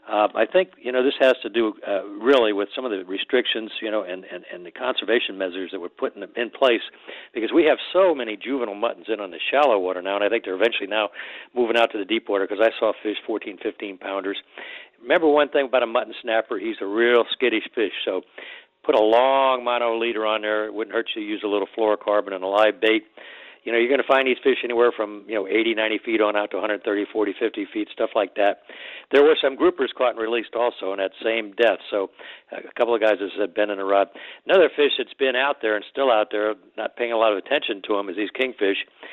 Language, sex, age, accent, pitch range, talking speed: English, male, 60-79, American, 105-130 Hz, 250 wpm